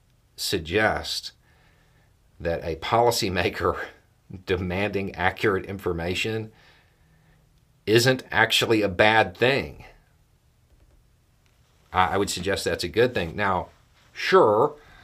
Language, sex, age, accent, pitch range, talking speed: English, male, 40-59, American, 85-110 Hz, 85 wpm